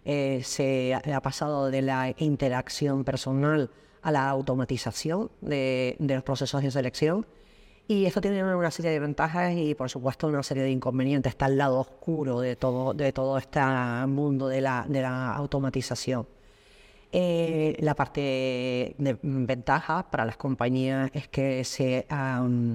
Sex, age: female, 30-49